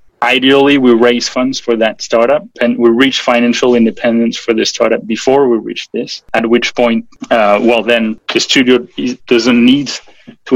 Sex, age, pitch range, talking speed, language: male, 30-49, 115-125 Hz, 170 wpm, English